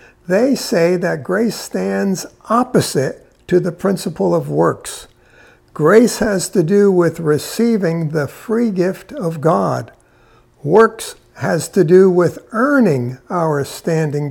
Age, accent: 60-79, American